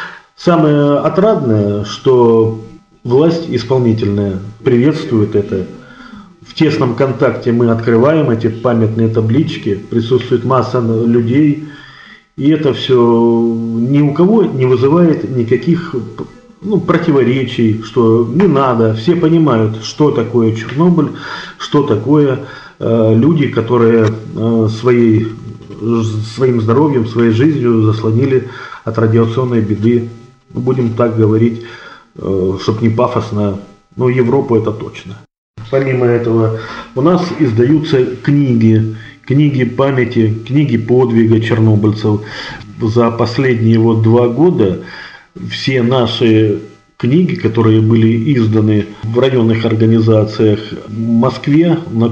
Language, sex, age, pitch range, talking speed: Russian, male, 30-49, 110-130 Hz, 100 wpm